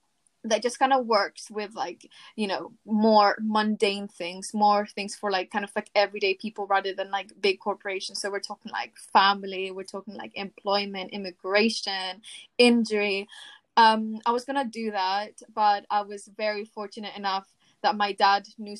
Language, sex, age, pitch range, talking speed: English, female, 10-29, 200-230 Hz, 170 wpm